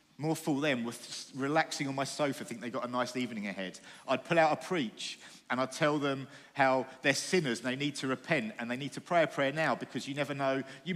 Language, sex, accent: English, male, British